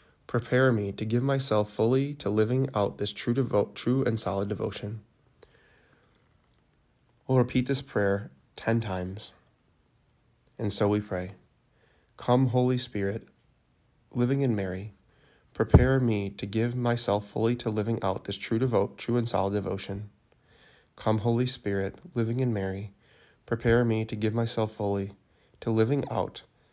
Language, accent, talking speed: English, American, 140 wpm